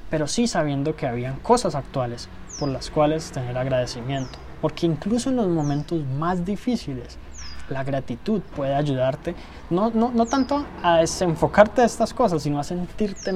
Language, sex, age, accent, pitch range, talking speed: Spanish, male, 20-39, Colombian, 140-180 Hz, 155 wpm